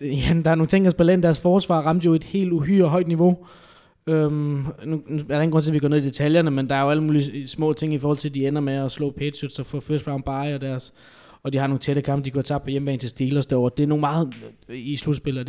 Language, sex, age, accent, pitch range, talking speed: Danish, male, 20-39, native, 130-150 Hz, 270 wpm